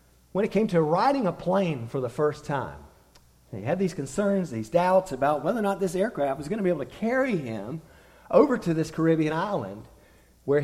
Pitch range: 125-185 Hz